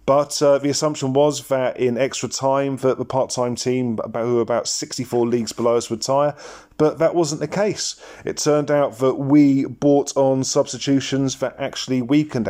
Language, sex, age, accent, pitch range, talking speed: English, male, 40-59, British, 115-140 Hz, 185 wpm